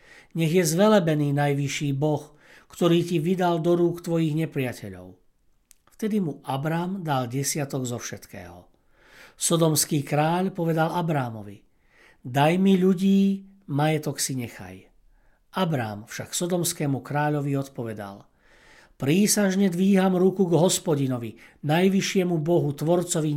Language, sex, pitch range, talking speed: Slovak, male, 135-180 Hz, 110 wpm